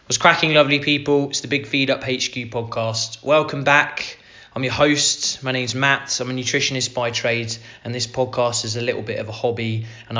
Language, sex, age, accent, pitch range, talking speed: English, male, 20-39, British, 115-130 Hz, 205 wpm